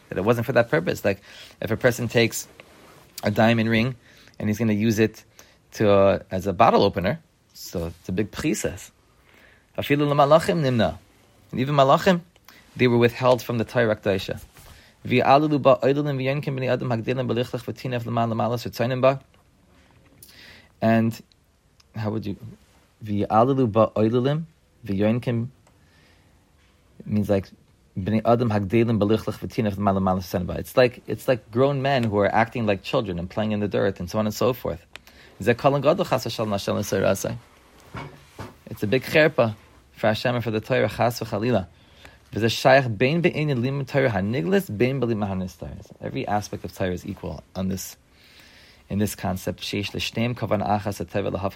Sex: male